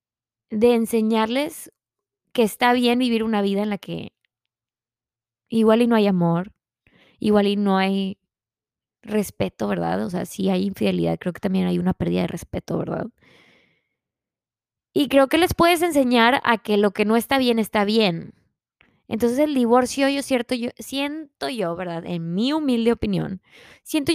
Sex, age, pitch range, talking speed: female, 20-39, 175-250 Hz, 160 wpm